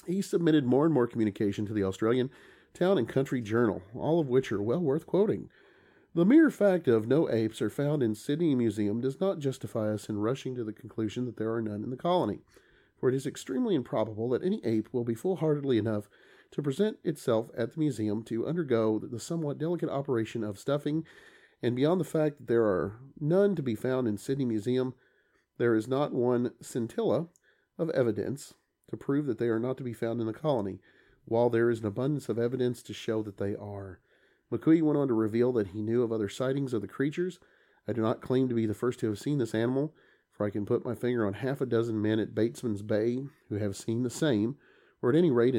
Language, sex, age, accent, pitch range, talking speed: English, male, 40-59, American, 110-140 Hz, 220 wpm